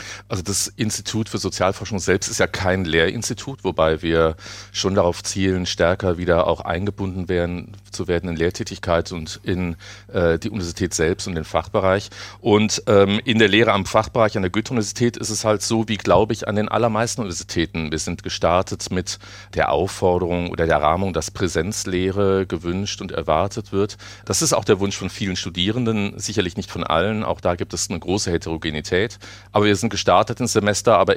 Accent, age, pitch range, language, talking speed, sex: German, 40-59, 90-105 Hz, German, 180 wpm, male